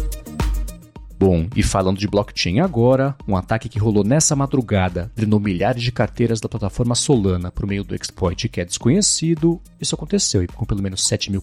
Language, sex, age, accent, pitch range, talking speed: Portuguese, male, 40-59, Brazilian, 95-125 Hz, 180 wpm